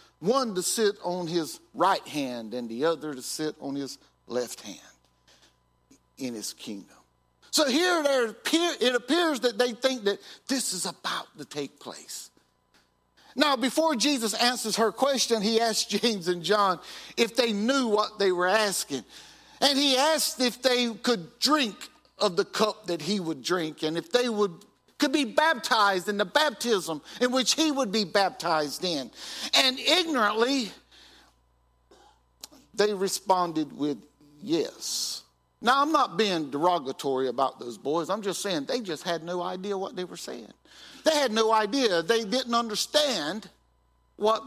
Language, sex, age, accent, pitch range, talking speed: English, male, 50-69, American, 155-250 Hz, 155 wpm